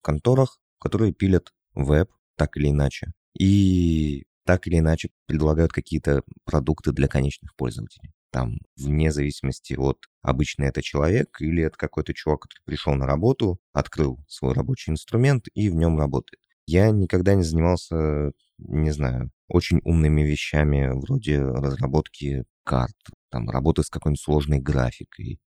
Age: 20-39